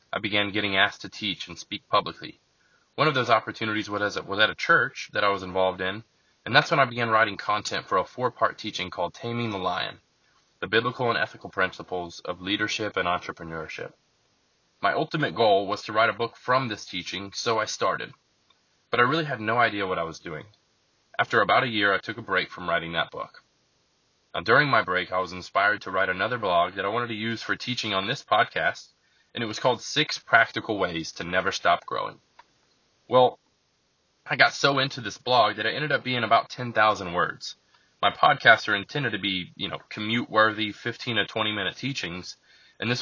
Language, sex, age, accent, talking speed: English, male, 20-39, American, 200 wpm